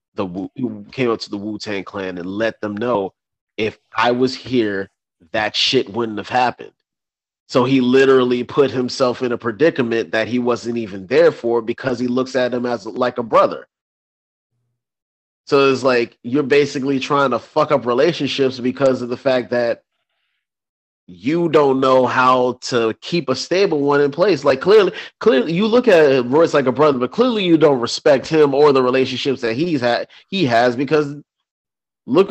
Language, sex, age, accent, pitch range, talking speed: English, male, 30-49, American, 105-135 Hz, 175 wpm